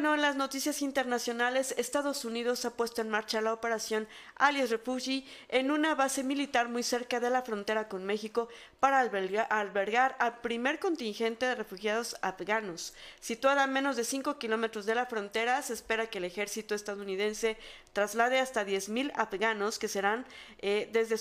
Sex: female